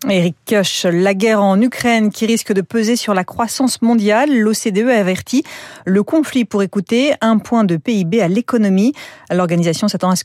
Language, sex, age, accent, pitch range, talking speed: French, female, 30-49, French, 180-230 Hz, 180 wpm